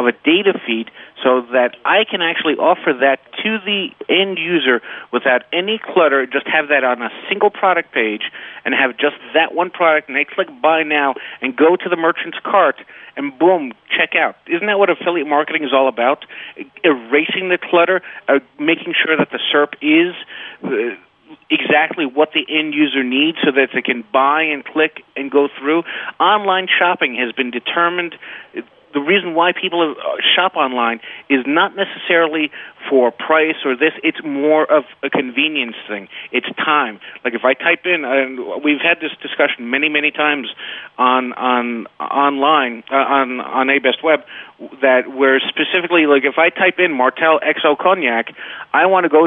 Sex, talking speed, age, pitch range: male, 175 wpm, 40-59, 135-180 Hz